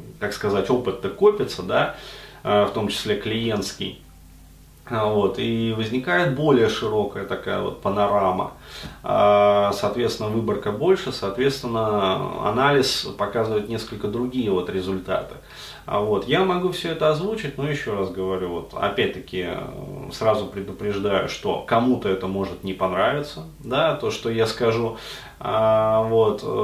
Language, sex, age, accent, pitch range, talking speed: Russian, male, 30-49, native, 105-130 Hz, 120 wpm